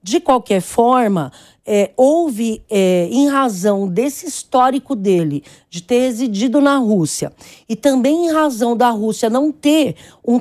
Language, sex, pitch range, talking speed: English, female, 200-260 Hz, 145 wpm